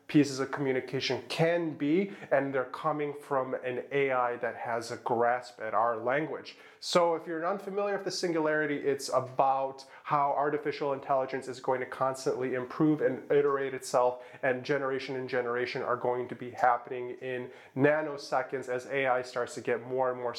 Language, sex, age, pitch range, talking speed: English, male, 30-49, 100-140 Hz, 170 wpm